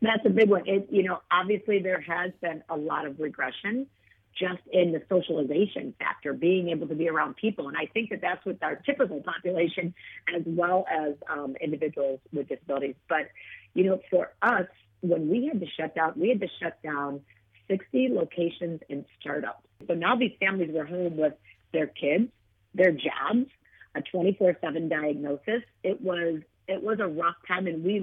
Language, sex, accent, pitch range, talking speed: English, female, American, 160-195 Hz, 180 wpm